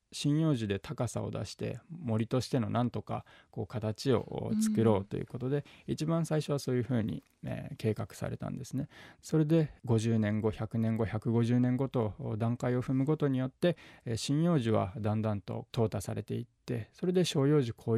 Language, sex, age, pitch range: Japanese, male, 20-39, 110-135 Hz